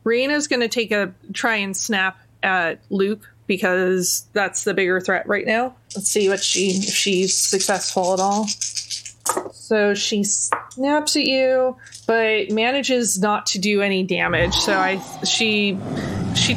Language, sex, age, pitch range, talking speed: English, female, 20-39, 190-245 Hz, 150 wpm